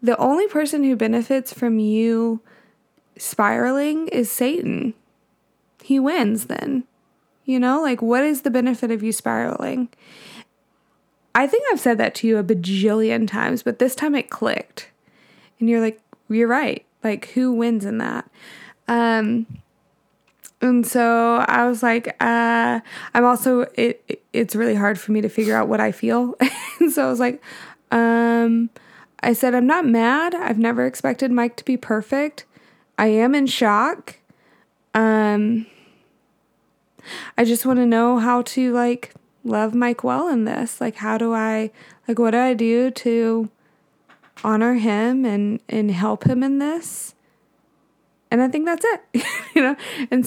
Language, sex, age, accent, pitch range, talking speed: English, female, 20-39, American, 220-255 Hz, 155 wpm